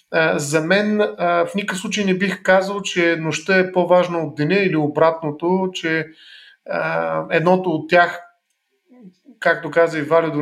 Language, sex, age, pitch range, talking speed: Bulgarian, male, 30-49, 155-185 Hz, 140 wpm